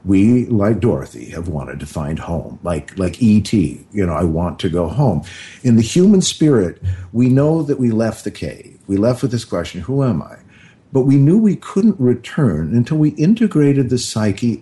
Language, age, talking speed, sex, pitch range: English, 50-69, 195 wpm, male, 105-145 Hz